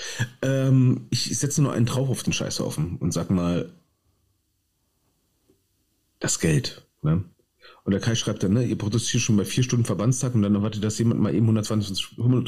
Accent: German